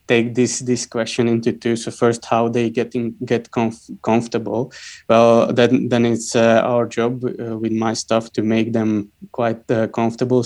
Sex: male